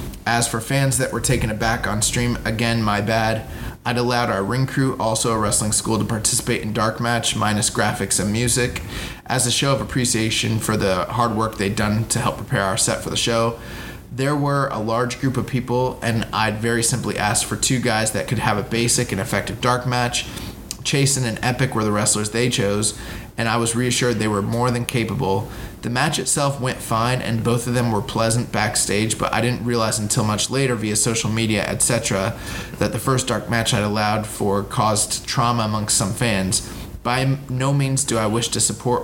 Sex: male